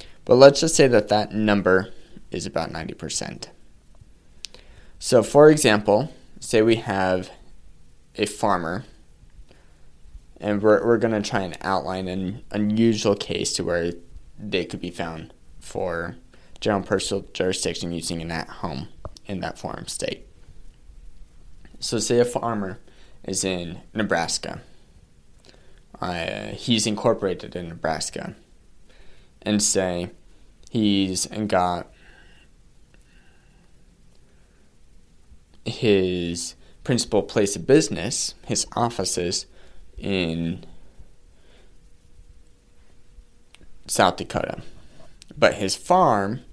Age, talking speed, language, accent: 20-39, 100 wpm, English, American